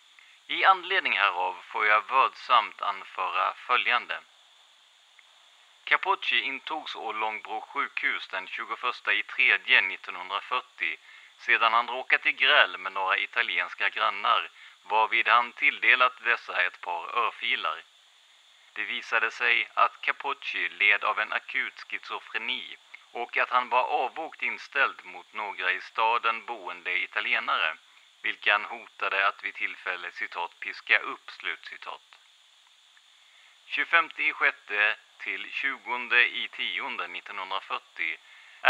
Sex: male